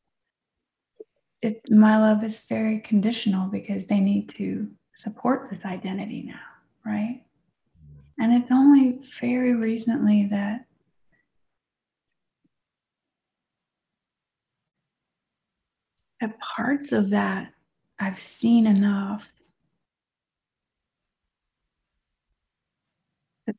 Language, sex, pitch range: English, female, 190-220 Hz